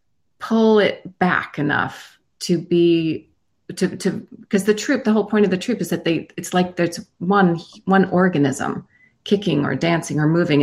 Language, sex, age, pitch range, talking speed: English, female, 30-49, 165-205 Hz, 175 wpm